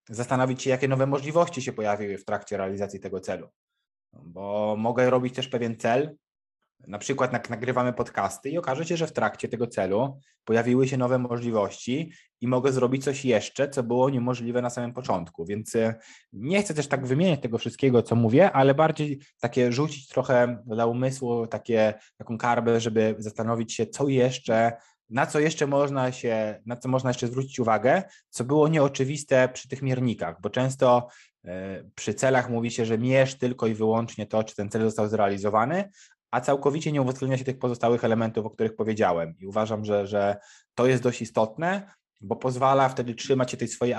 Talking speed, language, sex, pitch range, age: 180 wpm, Polish, male, 115-130 Hz, 20-39